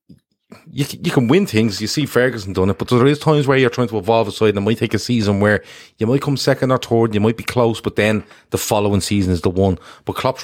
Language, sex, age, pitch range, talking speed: English, male, 30-49, 95-110 Hz, 275 wpm